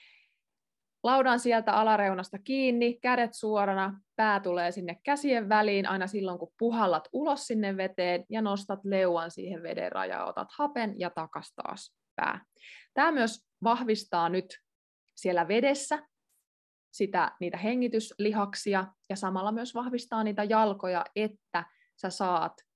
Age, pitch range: 20-39, 190-245 Hz